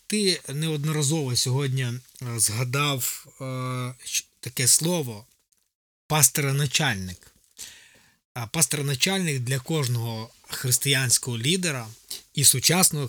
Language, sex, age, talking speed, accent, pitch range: Ukrainian, male, 20-39, 60 wpm, native, 125-160 Hz